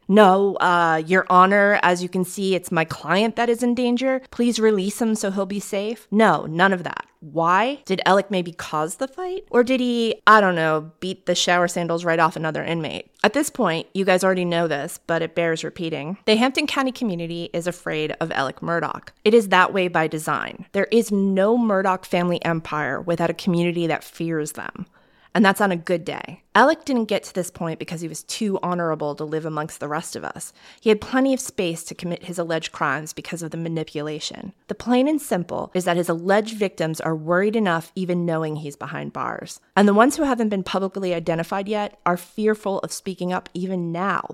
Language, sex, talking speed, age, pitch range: English, female, 210 wpm, 20-39, 165-205 Hz